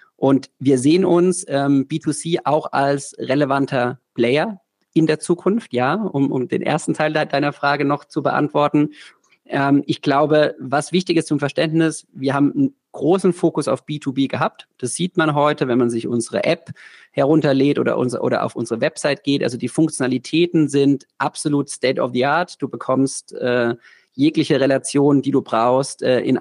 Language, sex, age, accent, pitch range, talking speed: German, male, 40-59, German, 130-155 Hz, 170 wpm